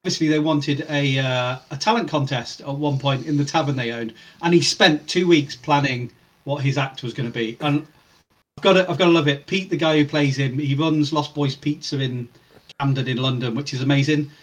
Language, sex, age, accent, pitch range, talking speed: English, male, 40-59, British, 140-170 Hz, 230 wpm